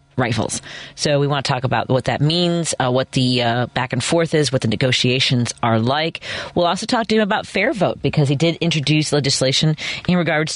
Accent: American